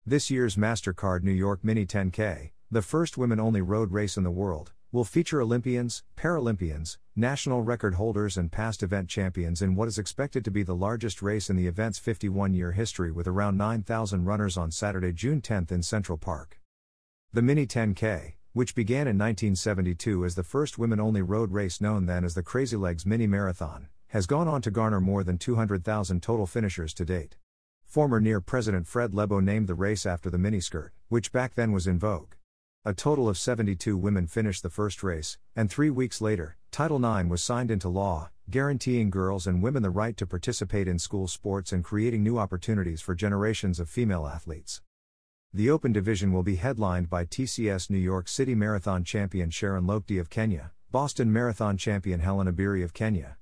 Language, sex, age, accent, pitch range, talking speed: English, male, 50-69, American, 90-115 Hz, 185 wpm